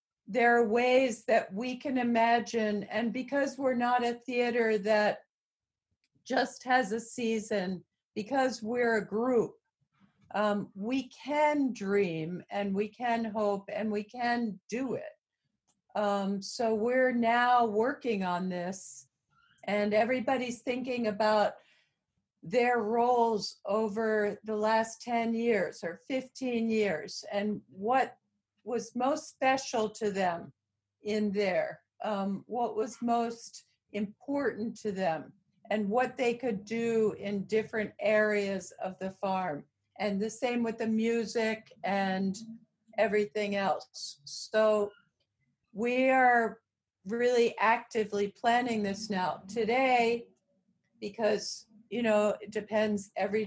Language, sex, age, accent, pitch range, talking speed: English, female, 60-79, American, 205-245 Hz, 120 wpm